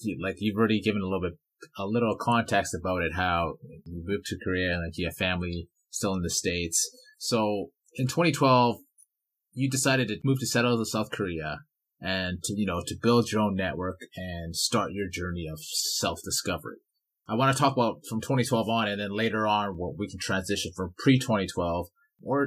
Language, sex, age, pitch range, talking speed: English, male, 30-49, 95-125 Hz, 190 wpm